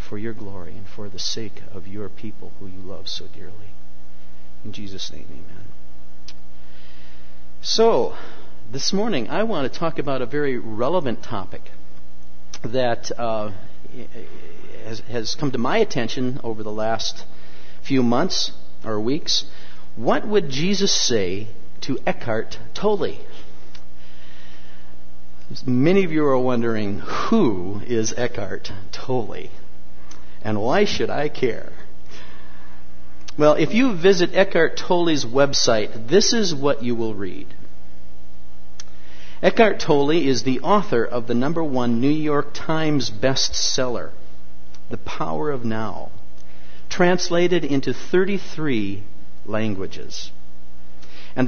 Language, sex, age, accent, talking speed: English, male, 50-69, American, 120 wpm